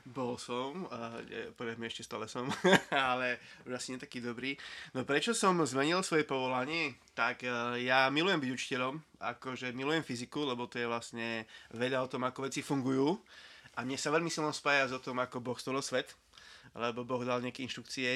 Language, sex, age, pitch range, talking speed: Slovak, male, 20-39, 120-140 Hz, 185 wpm